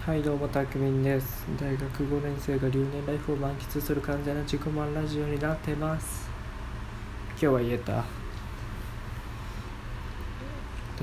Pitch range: 110-145 Hz